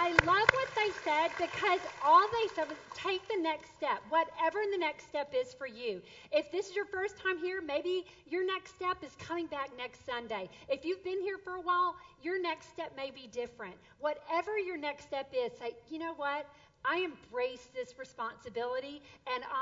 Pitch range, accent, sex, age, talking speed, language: 245-360 Hz, American, female, 40-59, 195 wpm, English